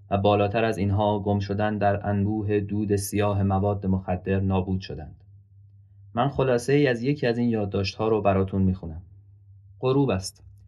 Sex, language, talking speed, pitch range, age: male, Persian, 150 wpm, 95-115 Hz, 30-49